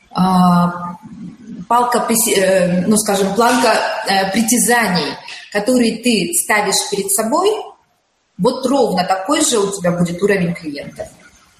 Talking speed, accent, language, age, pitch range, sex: 90 wpm, native, Russian, 30-49, 200-270 Hz, female